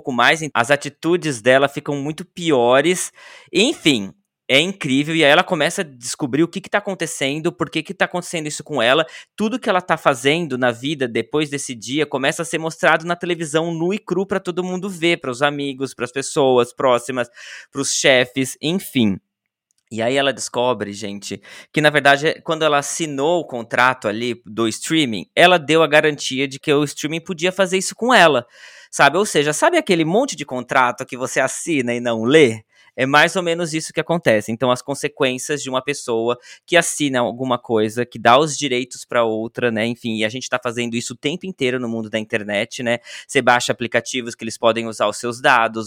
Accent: Brazilian